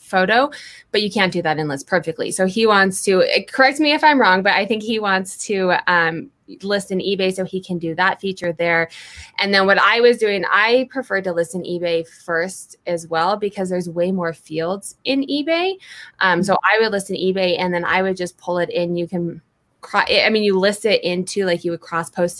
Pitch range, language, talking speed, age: 170-205 Hz, English, 220 wpm, 20-39